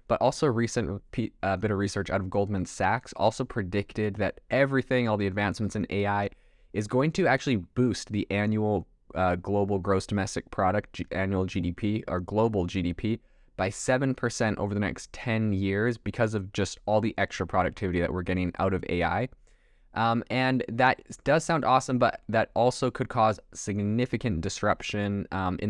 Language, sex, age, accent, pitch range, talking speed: English, male, 20-39, American, 95-110 Hz, 170 wpm